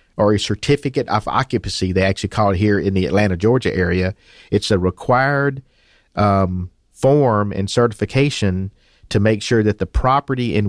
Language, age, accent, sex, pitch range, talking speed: English, 50-69, American, male, 95-110 Hz, 165 wpm